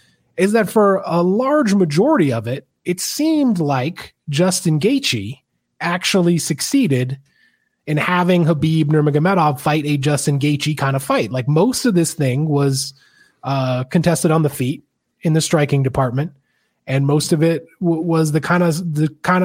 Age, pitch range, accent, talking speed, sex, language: 20-39, 130-170 Hz, American, 160 wpm, male, English